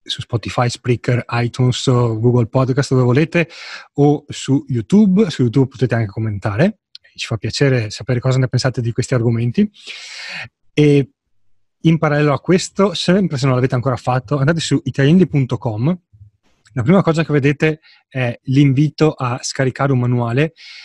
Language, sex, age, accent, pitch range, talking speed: Italian, male, 30-49, native, 120-145 Hz, 145 wpm